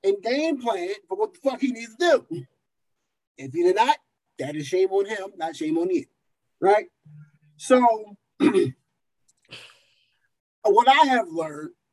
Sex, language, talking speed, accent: male, English, 150 wpm, American